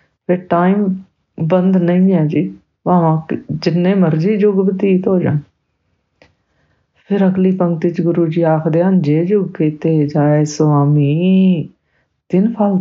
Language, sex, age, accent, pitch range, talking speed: English, female, 50-69, Indian, 150-185 Hz, 115 wpm